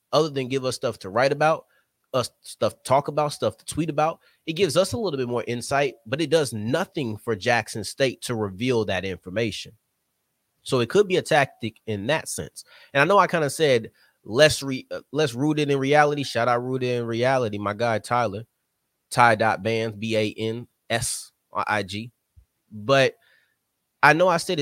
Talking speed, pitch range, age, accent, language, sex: 180 wpm, 110-145 Hz, 20-39, American, English, male